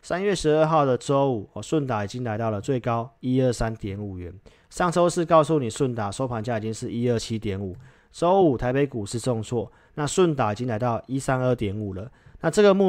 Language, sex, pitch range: Chinese, male, 110-140 Hz